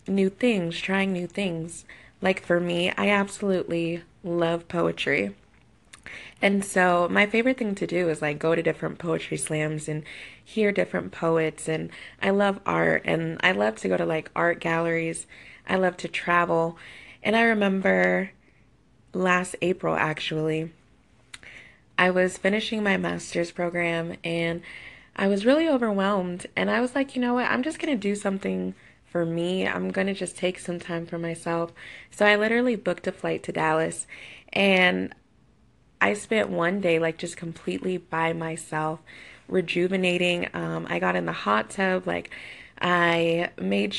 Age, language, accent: 20-39, English, American